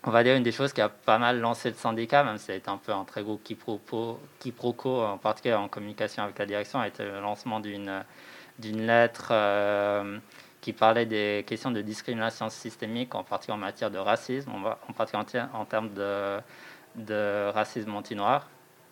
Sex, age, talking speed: male, 20-39, 185 wpm